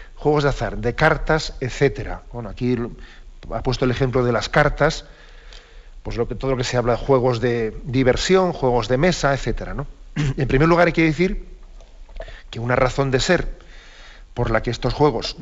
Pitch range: 110-140 Hz